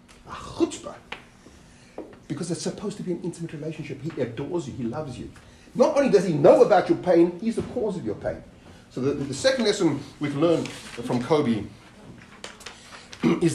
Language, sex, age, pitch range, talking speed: English, male, 40-59, 120-180 Hz, 170 wpm